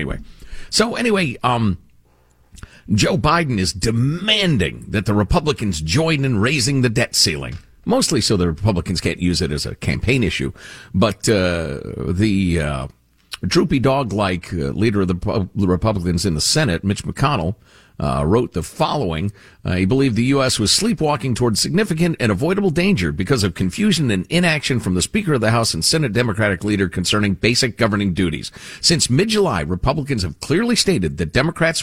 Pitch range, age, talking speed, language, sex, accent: 95-145 Hz, 50-69, 165 wpm, English, male, American